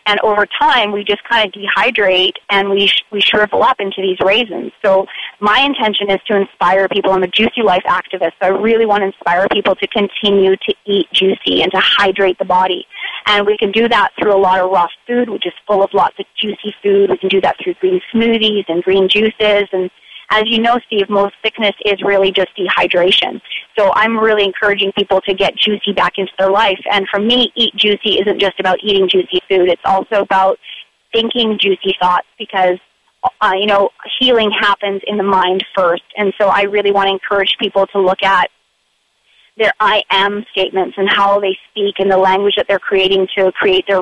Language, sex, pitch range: English, female, 190-210 Hz